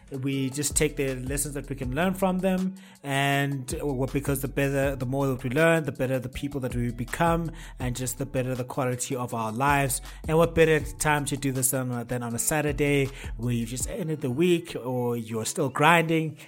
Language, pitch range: English, 125-155 Hz